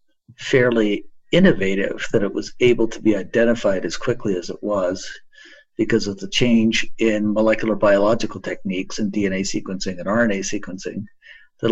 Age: 50-69